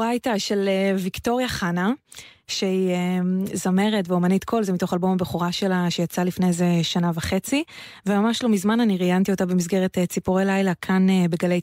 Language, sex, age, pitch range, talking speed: Hebrew, female, 20-39, 175-205 Hz, 150 wpm